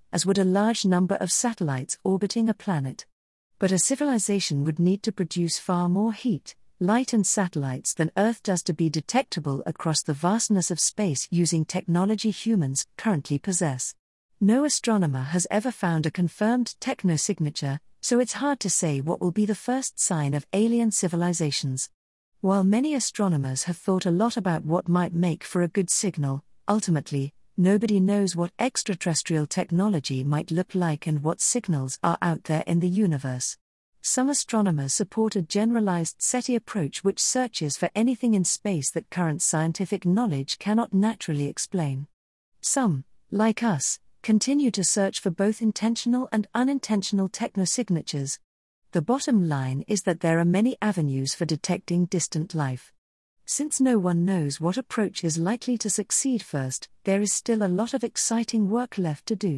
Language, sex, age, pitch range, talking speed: English, female, 50-69, 160-220 Hz, 160 wpm